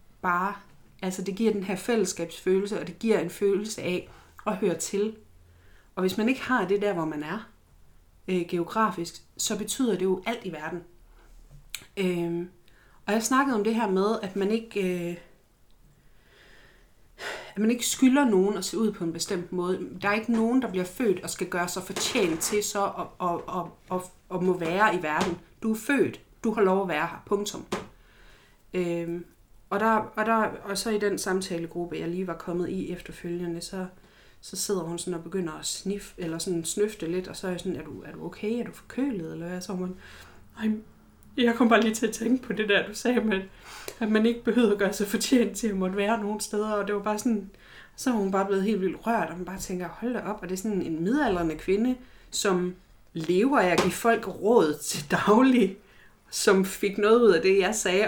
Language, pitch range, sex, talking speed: Danish, 175-215 Hz, female, 205 wpm